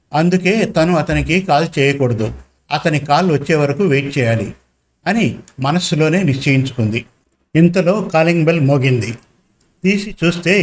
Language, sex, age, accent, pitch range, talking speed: Telugu, male, 50-69, native, 140-175 Hz, 115 wpm